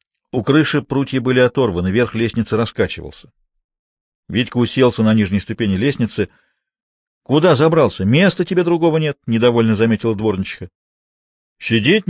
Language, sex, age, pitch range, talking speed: Russian, male, 50-69, 105-140 Hz, 135 wpm